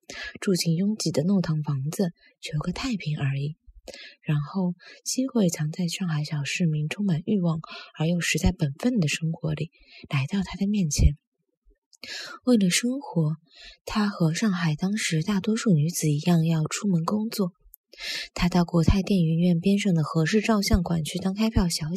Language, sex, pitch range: Chinese, female, 160-215 Hz